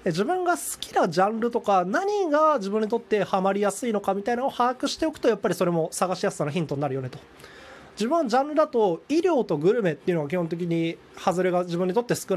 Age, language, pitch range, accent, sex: 20-39, Japanese, 180-250 Hz, native, male